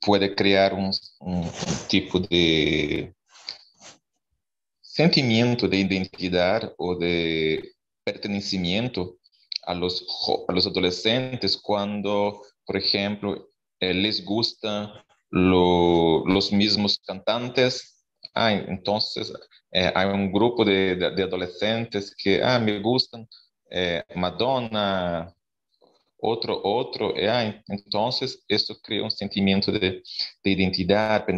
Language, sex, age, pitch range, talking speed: Portuguese, male, 30-49, 90-105 Hz, 100 wpm